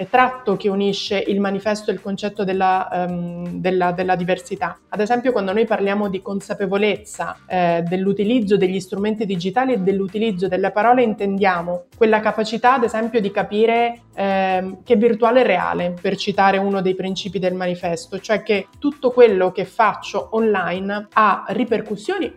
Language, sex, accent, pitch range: Italian, female, native, 185-220 Hz